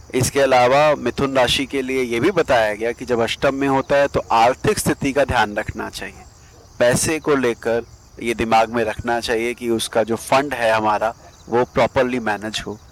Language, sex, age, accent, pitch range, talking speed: Hindi, male, 30-49, native, 110-140 Hz, 190 wpm